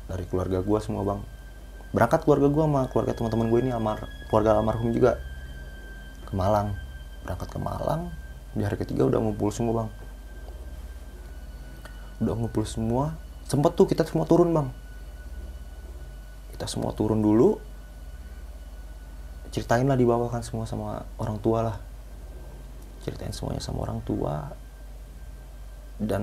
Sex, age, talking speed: male, 30-49, 130 wpm